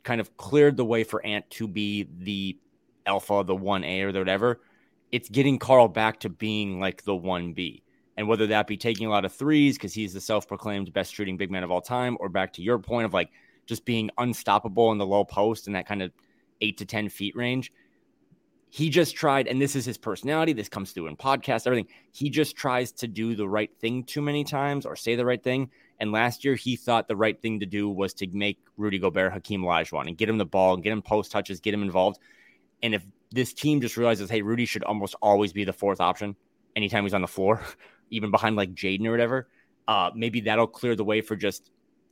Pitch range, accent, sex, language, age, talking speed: 100-120 Hz, American, male, English, 20-39, 230 wpm